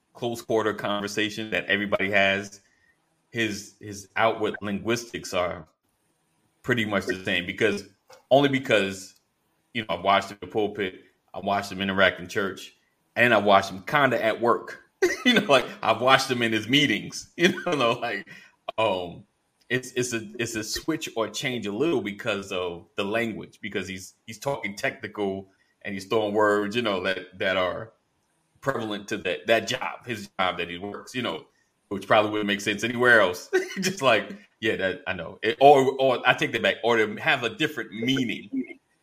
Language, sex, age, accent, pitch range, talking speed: English, male, 30-49, American, 100-120 Hz, 180 wpm